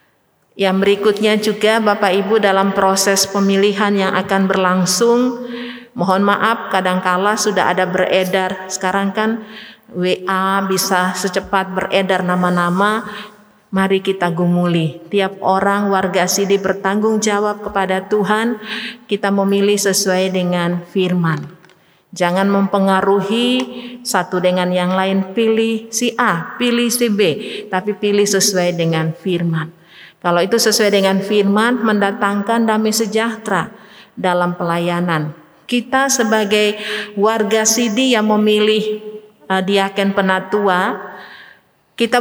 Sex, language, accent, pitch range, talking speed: female, Indonesian, native, 190-220 Hz, 110 wpm